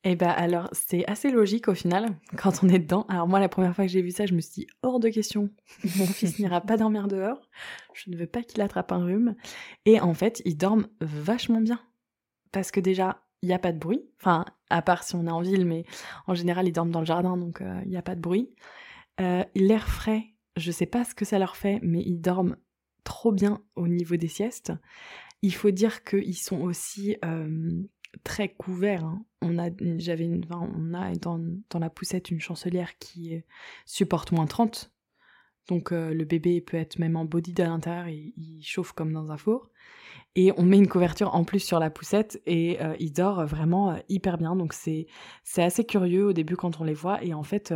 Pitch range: 170-205 Hz